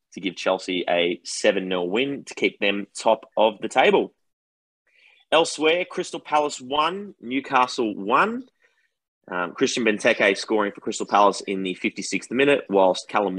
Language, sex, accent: English, male, Australian